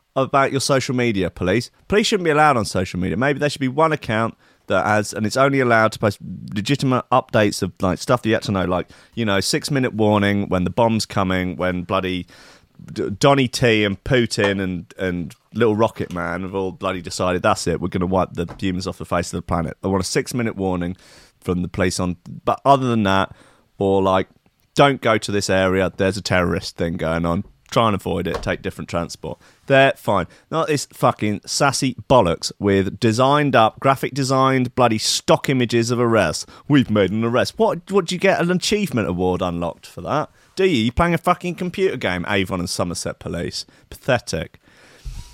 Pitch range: 95-135 Hz